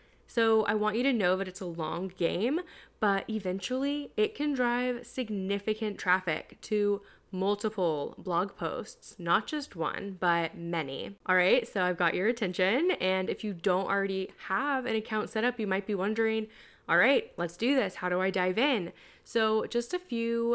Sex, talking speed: female, 180 wpm